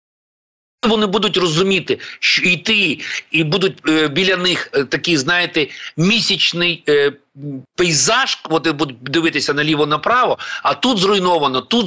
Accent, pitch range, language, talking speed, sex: native, 150-210 Hz, Ukrainian, 110 wpm, male